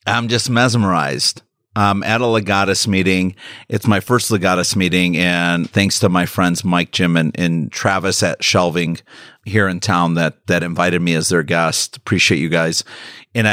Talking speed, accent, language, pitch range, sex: 175 wpm, American, English, 90-110 Hz, male